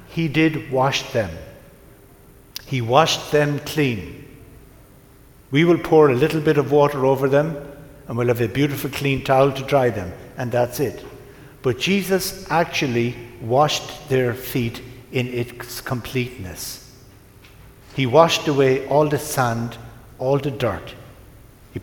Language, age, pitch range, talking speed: English, 60-79, 120-145 Hz, 135 wpm